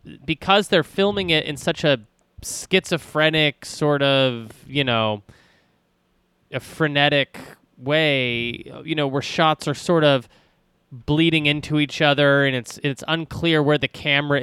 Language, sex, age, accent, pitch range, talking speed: English, male, 20-39, American, 125-160 Hz, 135 wpm